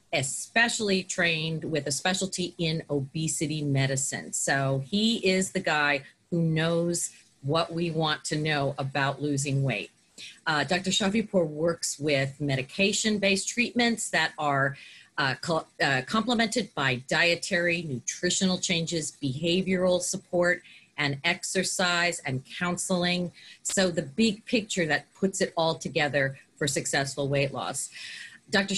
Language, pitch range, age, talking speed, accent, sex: English, 150-190 Hz, 40-59, 125 wpm, American, female